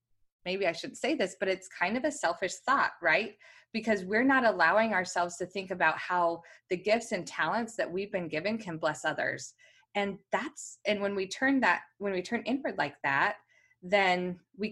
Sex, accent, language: female, American, English